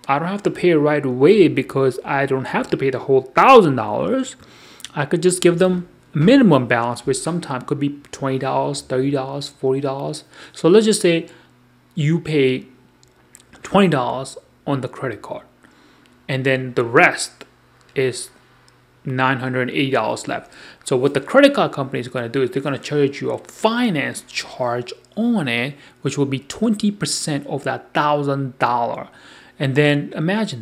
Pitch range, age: 130-165 Hz, 30-49